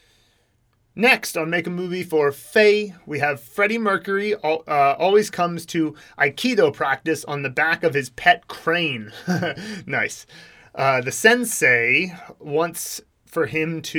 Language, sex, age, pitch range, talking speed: English, male, 30-49, 140-185 Hz, 135 wpm